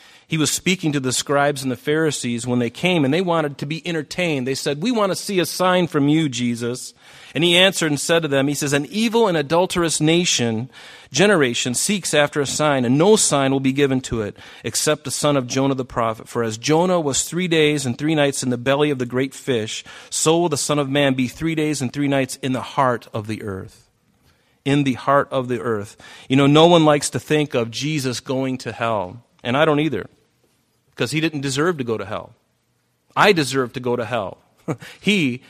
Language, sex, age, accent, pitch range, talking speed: English, male, 40-59, American, 115-145 Hz, 225 wpm